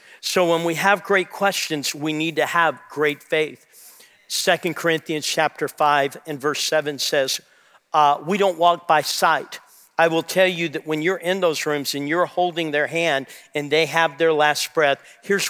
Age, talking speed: 50-69, 185 wpm